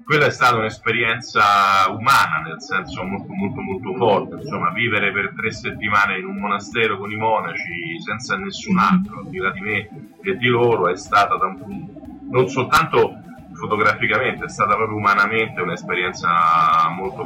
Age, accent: 40-59, native